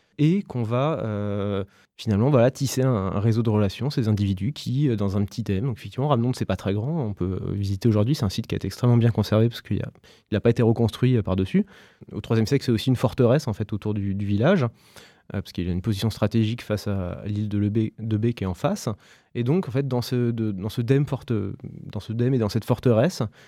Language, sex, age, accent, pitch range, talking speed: French, male, 20-39, French, 105-130 Hz, 220 wpm